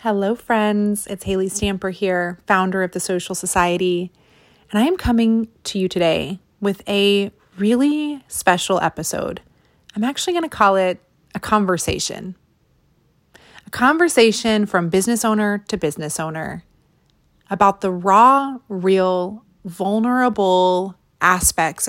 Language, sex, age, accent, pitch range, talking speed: English, female, 30-49, American, 190-235 Hz, 125 wpm